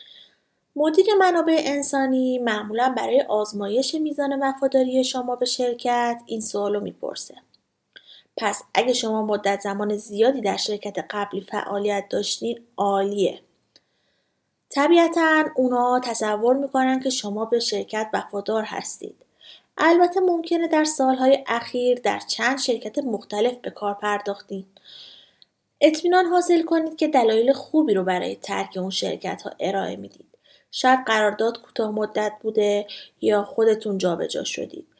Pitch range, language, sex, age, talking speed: 210-280 Hz, Persian, female, 30-49, 120 wpm